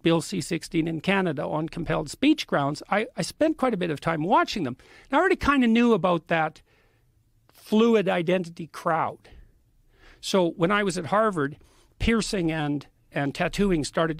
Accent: American